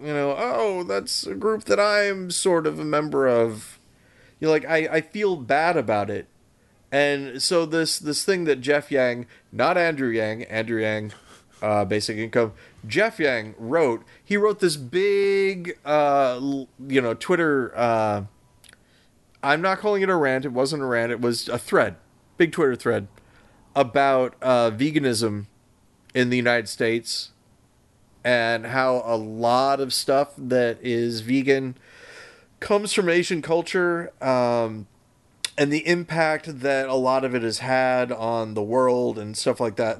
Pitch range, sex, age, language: 115-150 Hz, male, 30-49, English